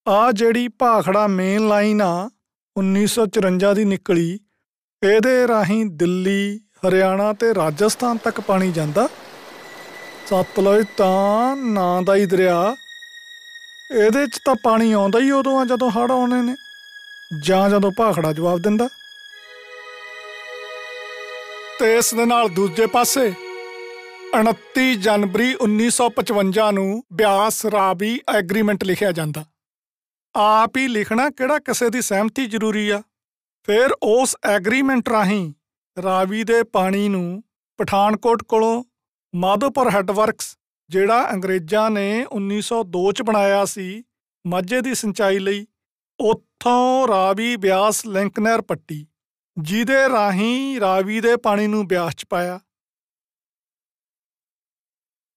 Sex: male